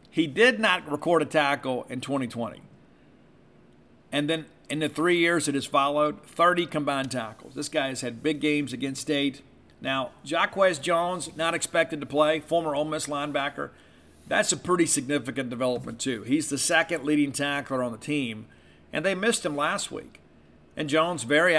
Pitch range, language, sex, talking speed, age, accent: 130-160 Hz, English, male, 170 wpm, 50-69, American